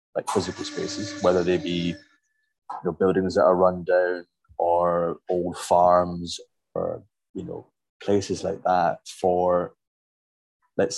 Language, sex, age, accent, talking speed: English, male, 20-39, British, 130 wpm